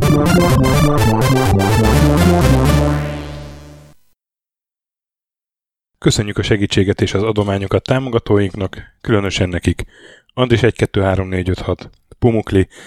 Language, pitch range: Hungarian, 95-110 Hz